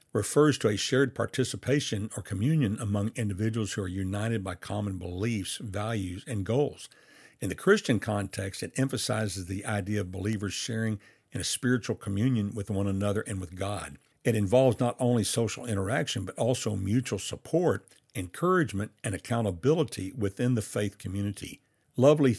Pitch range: 100-125 Hz